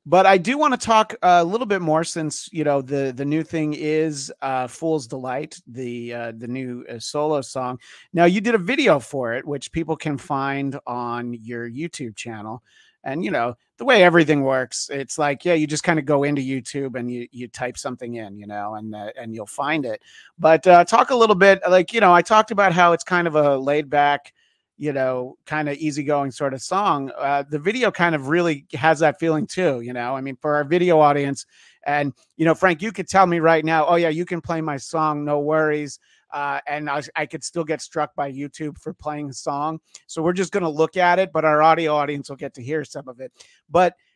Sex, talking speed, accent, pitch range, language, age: male, 235 wpm, American, 135-170 Hz, English, 30-49